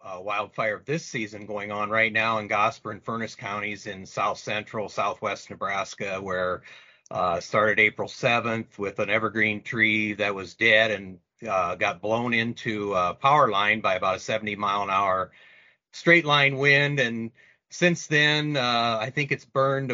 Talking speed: 170 wpm